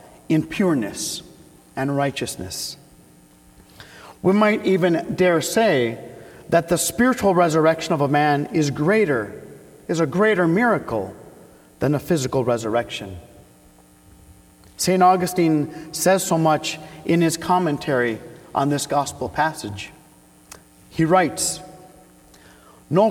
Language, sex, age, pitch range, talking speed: English, male, 40-59, 135-185 Hz, 105 wpm